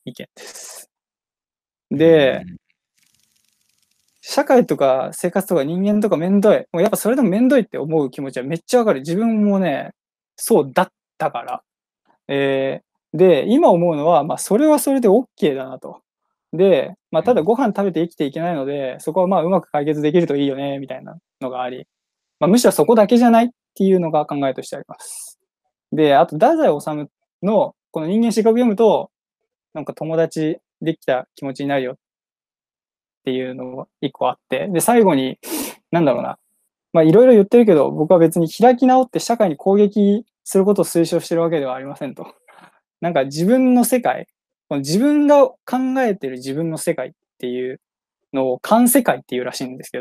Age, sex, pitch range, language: 20-39, male, 145-230 Hz, Japanese